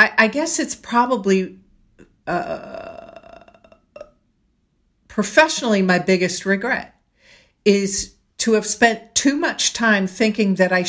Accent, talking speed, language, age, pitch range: American, 105 wpm, English, 50-69, 170-210 Hz